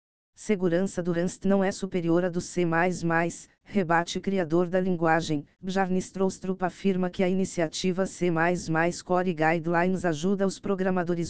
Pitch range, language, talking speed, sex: 170-190 Hz, Portuguese, 125 wpm, female